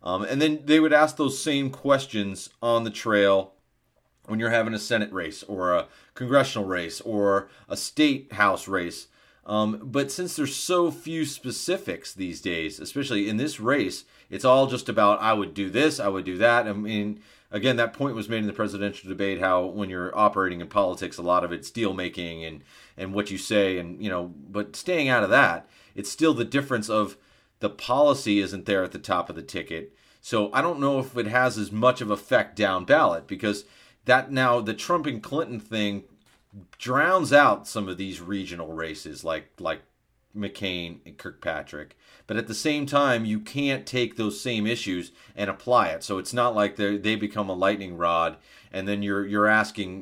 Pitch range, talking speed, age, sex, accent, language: 95-125 Hz, 195 wpm, 30-49, male, American, English